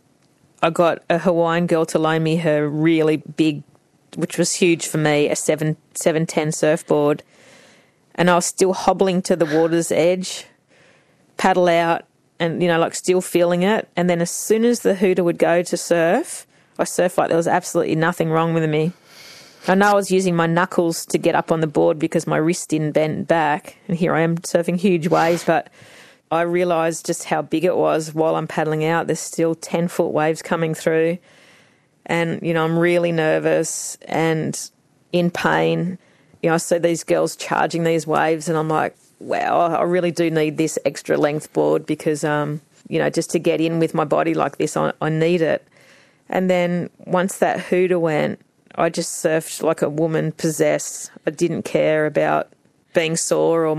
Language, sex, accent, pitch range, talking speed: English, female, Australian, 160-175 Hz, 190 wpm